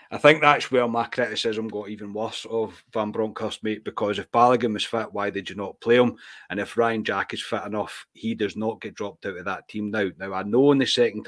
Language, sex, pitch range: English, male, 100-120 Hz